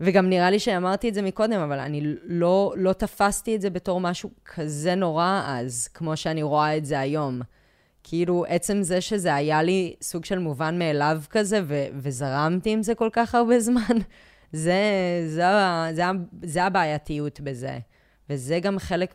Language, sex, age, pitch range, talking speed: Hebrew, female, 20-39, 140-190 Hz, 170 wpm